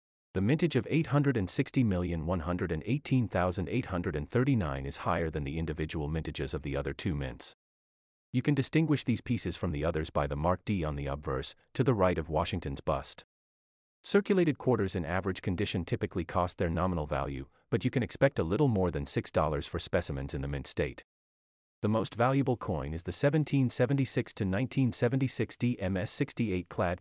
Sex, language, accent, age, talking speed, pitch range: male, English, American, 40-59, 155 wpm, 80-130 Hz